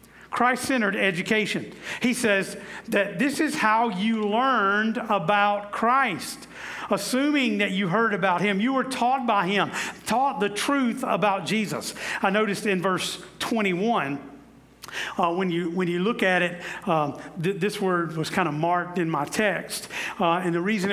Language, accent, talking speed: English, American, 160 wpm